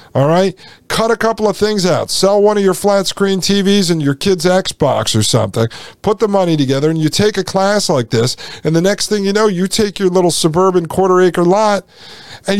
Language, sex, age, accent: English, male, 50-69, American